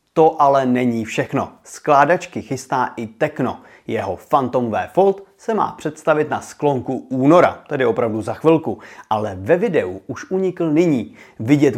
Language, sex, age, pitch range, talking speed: Czech, male, 30-49, 115-160 Hz, 145 wpm